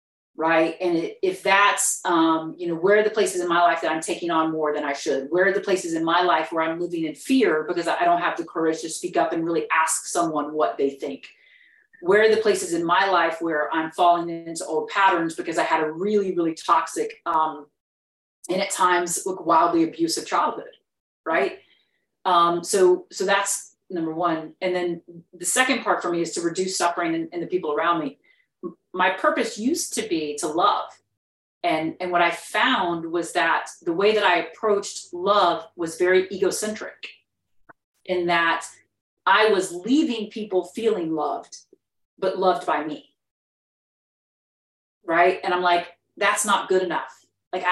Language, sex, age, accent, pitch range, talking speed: English, female, 40-59, American, 165-200 Hz, 185 wpm